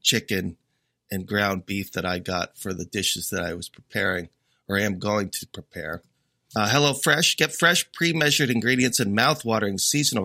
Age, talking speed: 30-49, 170 wpm